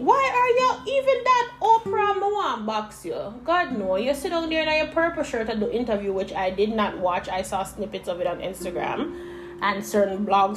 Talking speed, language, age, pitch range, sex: 210 wpm, English, 20-39, 215-335 Hz, female